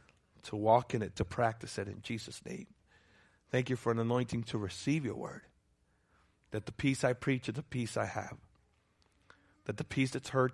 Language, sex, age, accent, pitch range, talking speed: English, male, 40-59, American, 125-175 Hz, 195 wpm